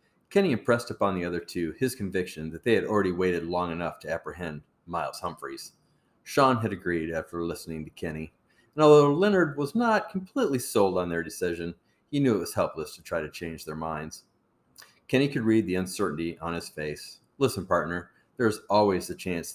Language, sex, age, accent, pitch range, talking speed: English, male, 40-59, American, 85-125 Hz, 190 wpm